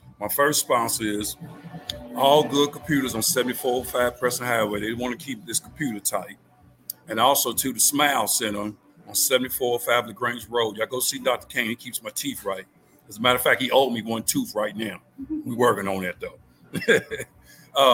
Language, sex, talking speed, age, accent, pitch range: English, male, 180 wpm, 50-69, American, 120-165 Hz